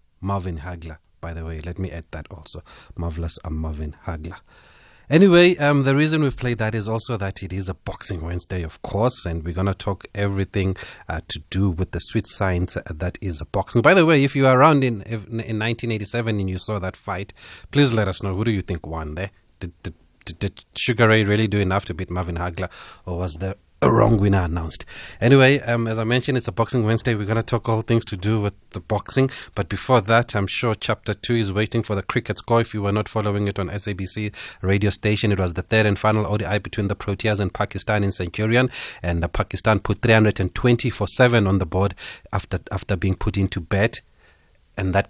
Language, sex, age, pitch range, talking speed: English, male, 30-49, 95-115 Hz, 220 wpm